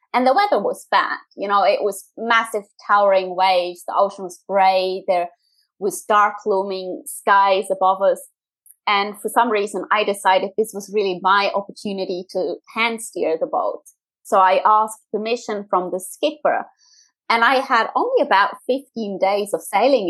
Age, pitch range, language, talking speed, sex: 20-39, 190-255 Hz, English, 165 wpm, female